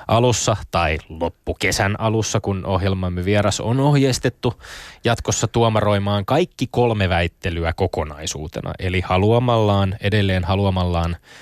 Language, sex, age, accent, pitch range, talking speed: Finnish, male, 20-39, native, 95-125 Hz, 100 wpm